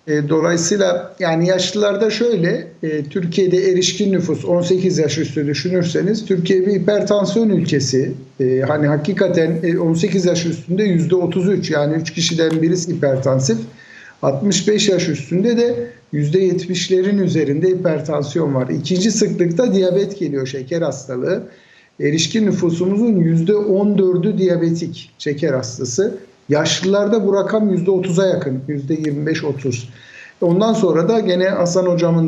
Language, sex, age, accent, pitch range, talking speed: Turkish, male, 60-79, native, 155-195 Hz, 110 wpm